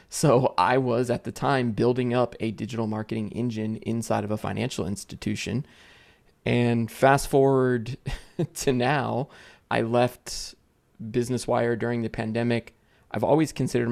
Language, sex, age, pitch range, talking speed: English, male, 20-39, 110-120 Hz, 140 wpm